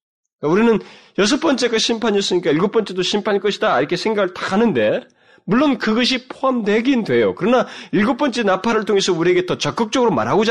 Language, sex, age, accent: Korean, male, 30-49, native